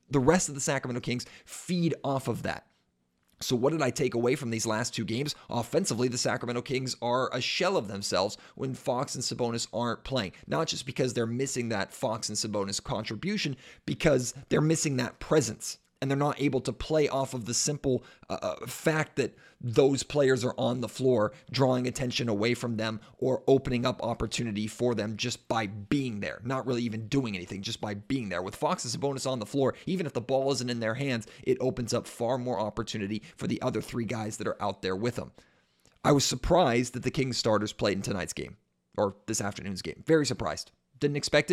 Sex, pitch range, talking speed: male, 115-135 Hz, 210 wpm